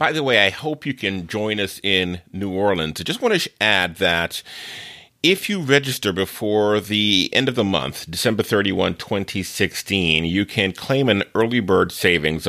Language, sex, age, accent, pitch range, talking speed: English, male, 30-49, American, 85-110 Hz, 180 wpm